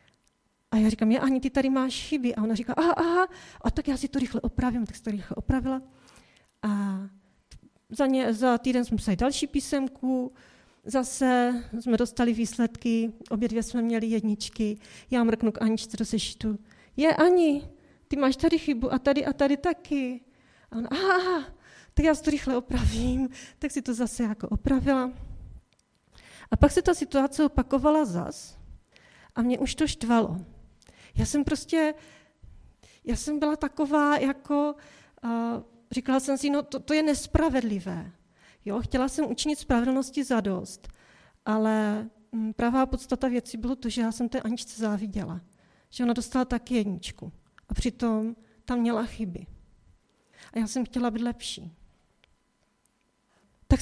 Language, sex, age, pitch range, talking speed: Czech, female, 30-49, 225-280 Hz, 155 wpm